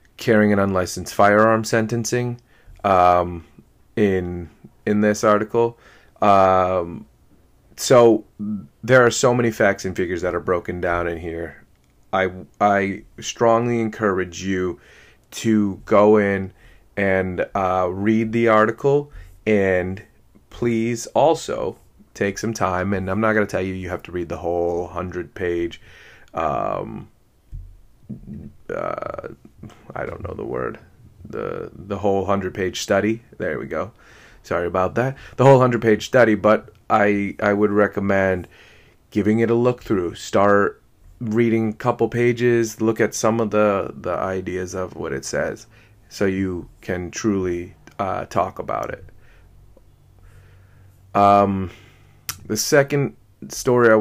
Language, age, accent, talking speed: English, 30-49, American, 135 wpm